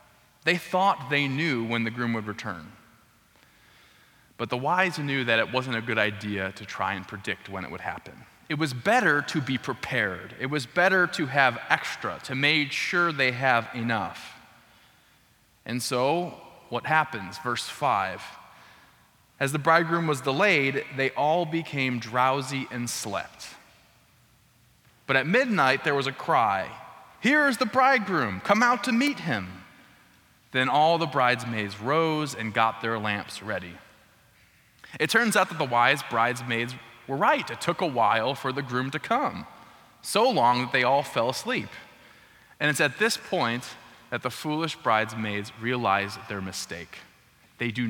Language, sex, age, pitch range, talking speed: English, male, 20-39, 115-155 Hz, 160 wpm